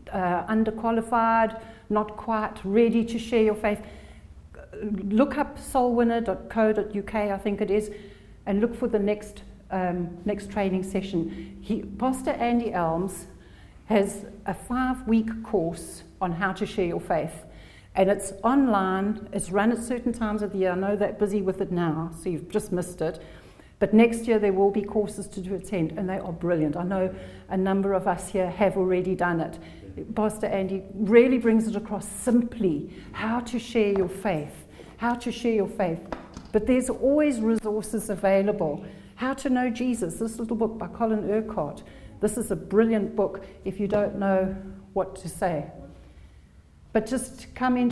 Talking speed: 170 wpm